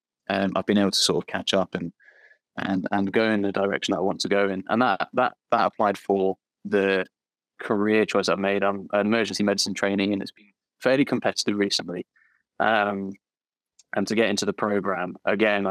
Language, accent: English, British